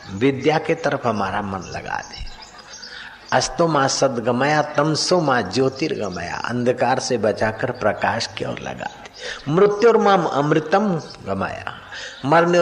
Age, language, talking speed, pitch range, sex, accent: 60-79, Hindi, 85 wpm, 110-155 Hz, male, native